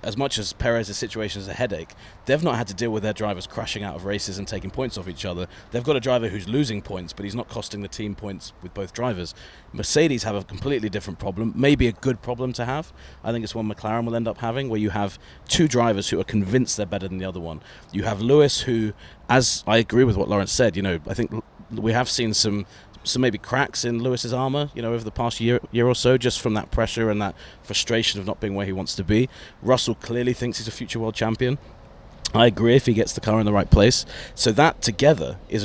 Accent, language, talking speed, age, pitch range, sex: British, English, 250 wpm, 30-49, 100-120 Hz, male